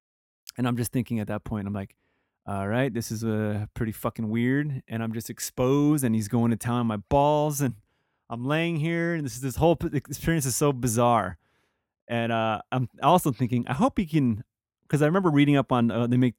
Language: English